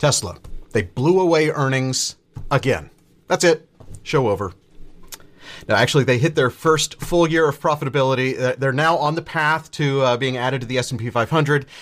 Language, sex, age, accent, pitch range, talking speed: English, male, 40-59, American, 130-160 Hz, 175 wpm